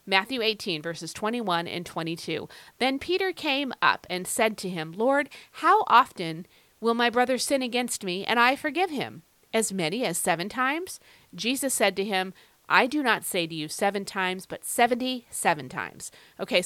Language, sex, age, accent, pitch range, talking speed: English, female, 40-59, American, 170-225 Hz, 175 wpm